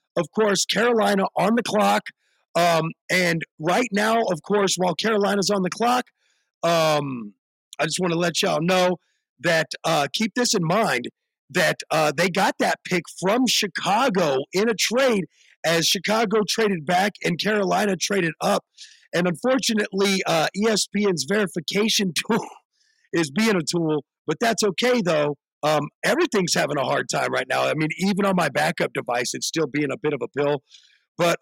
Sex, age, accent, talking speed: male, 40-59, American, 170 wpm